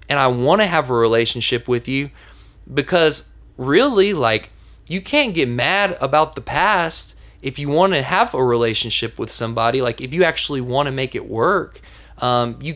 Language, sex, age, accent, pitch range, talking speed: English, male, 20-39, American, 125-165 Hz, 185 wpm